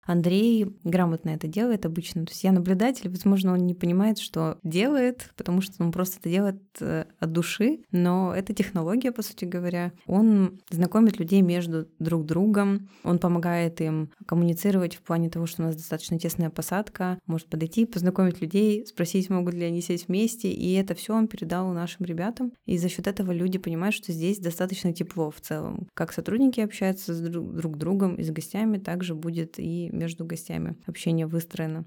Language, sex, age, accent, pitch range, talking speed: Russian, female, 20-39, native, 165-195 Hz, 175 wpm